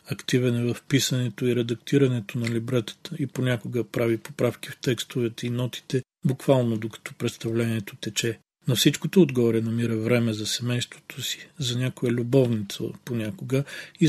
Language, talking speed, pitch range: Bulgarian, 140 wpm, 115-135 Hz